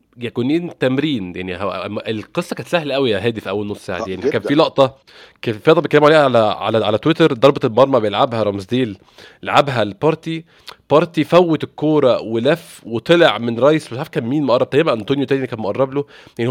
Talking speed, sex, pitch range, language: 185 wpm, male, 115-150 Hz, Arabic